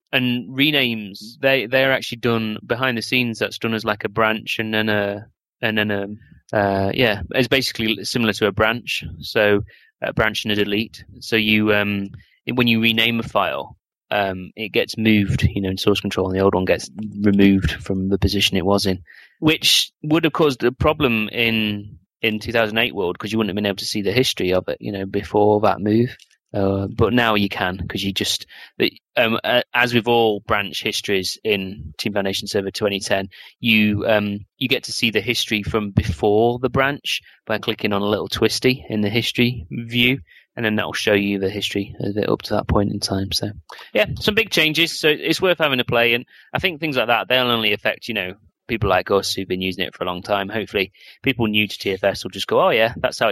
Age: 30-49